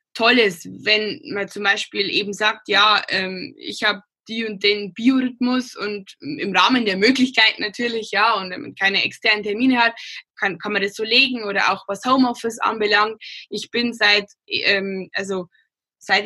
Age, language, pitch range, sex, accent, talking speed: 10-29, German, 195-245 Hz, female, German, 170 wpm